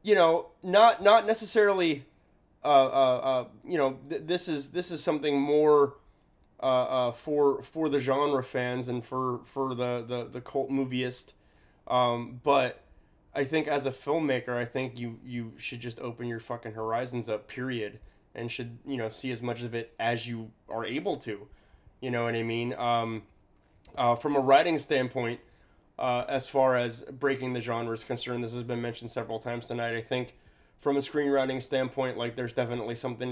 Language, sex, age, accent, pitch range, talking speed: English, male, 20-39, American, 115-135 Hz, 180 wpm